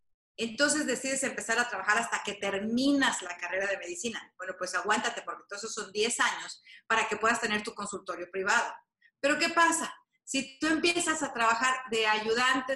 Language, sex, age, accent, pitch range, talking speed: Spanish, female, 30-49, Mexican, 205-265 Hz, 180 wpm